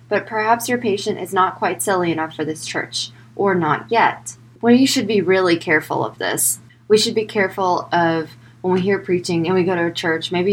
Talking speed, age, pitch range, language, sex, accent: 220 wpm, 20-39, 155-195 Hz, English, female, American